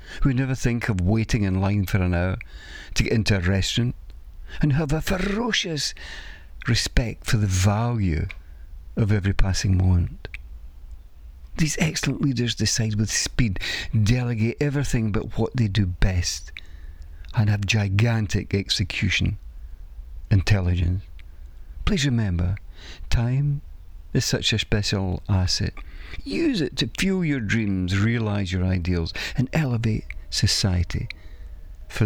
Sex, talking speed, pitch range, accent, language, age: male, 125 wpm, 80-115 Hz, British, English, 50-69